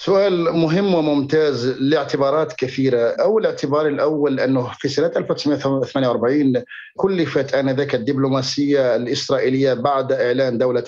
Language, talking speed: Arabic, 105 wpm